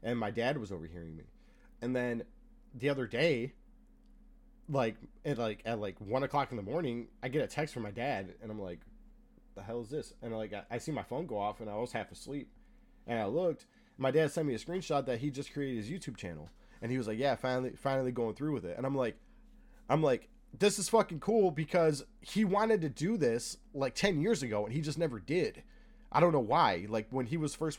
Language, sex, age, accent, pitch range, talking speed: English, male, 20-39, American, 110-155 Hz, 240 wpm